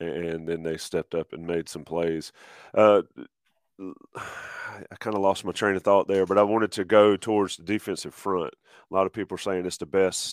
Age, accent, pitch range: 30-49, American, 90-105 Hz